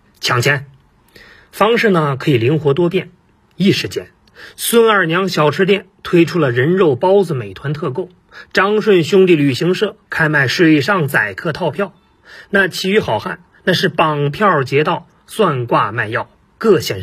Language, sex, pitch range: Chinese, male, 140-195 Hz